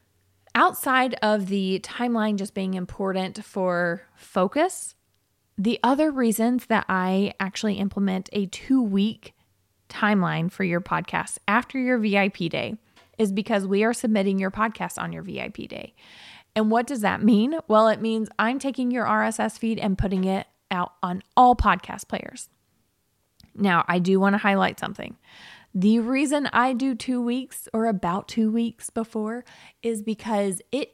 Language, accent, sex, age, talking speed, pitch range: English, American, female, 20-39, 155 wpm, 190-230 Hz